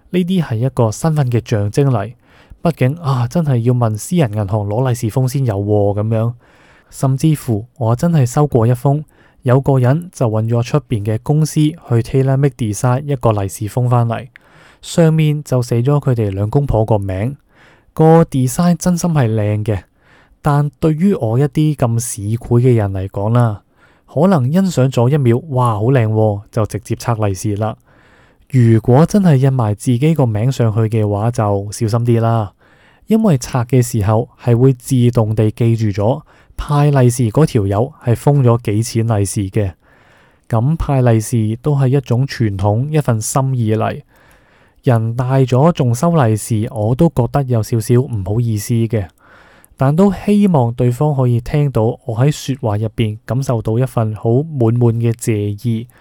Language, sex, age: Chinese, male, 20-39